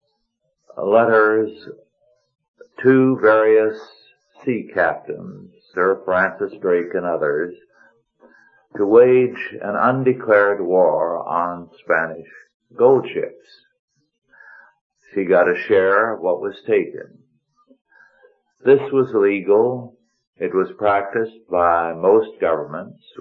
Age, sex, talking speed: 60-79, male, 95 wpm